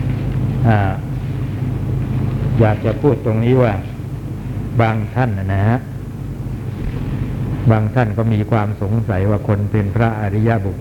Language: Thai